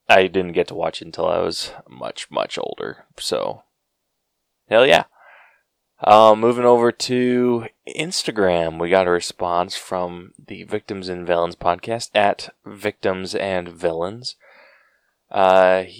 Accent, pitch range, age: American, 90-120 Hz, 20-39